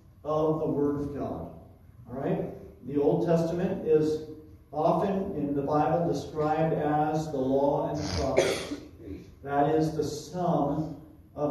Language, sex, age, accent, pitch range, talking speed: English, male, 40-59, American, 130-165 Hz, 135 wpm